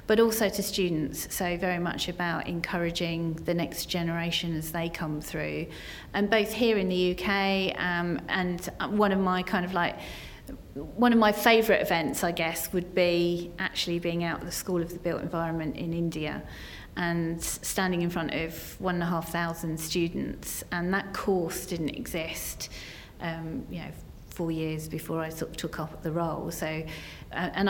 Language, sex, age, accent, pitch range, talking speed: English, female, 40-59, British, 160-180 Hz, 180 wpm